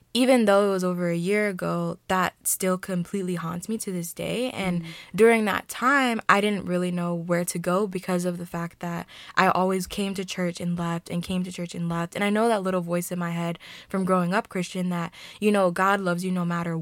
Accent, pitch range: American, 170-195 Hz